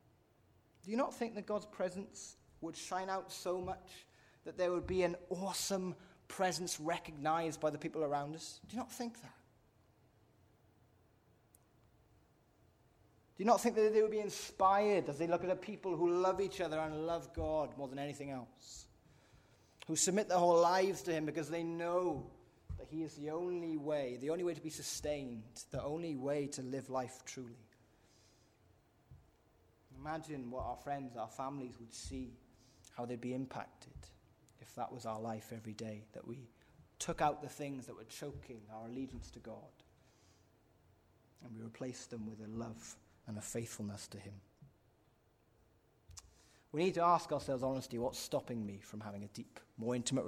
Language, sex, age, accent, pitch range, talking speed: English, male, 20-39, British, 110-165 Hz, 170 wpm